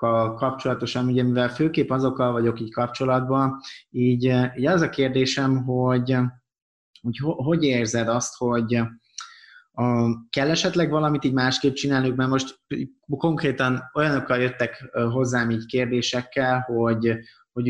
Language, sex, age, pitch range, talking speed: Hungarian, male, 20-39, 115-135 Hz, 120 wpm